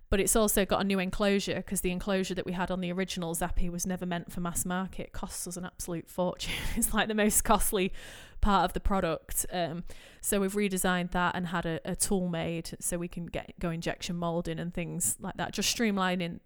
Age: 20-39